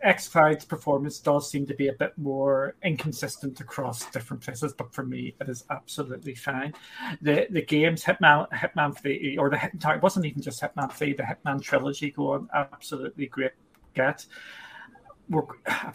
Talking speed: 160 wpm